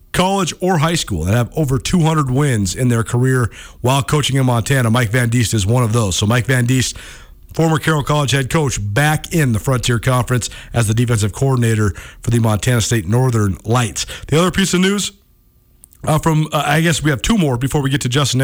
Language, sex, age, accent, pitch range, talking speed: English, male, 40-59, American, 120-165 Hz, 215 wpm